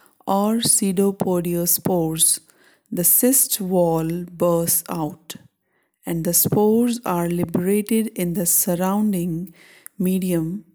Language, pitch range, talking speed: English, 175-215 Hz, 95 wpm